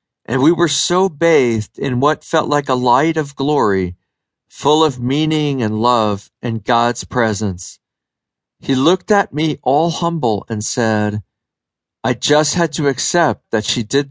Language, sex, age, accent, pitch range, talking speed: English, male, 50-69, American, 115-155 Hz, 155 wpm